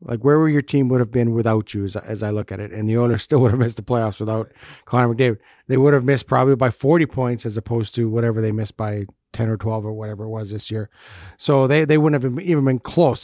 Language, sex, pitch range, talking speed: English, male, 115-140 Hz, 275 wpm